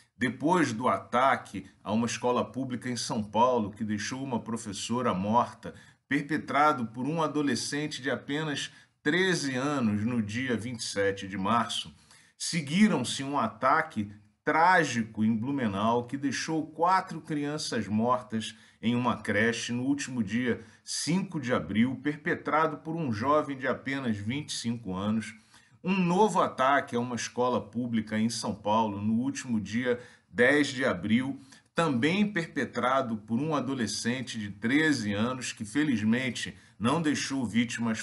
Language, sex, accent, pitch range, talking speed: Portuguese, male, Brazilian, 115-155 Hz, 135 wpm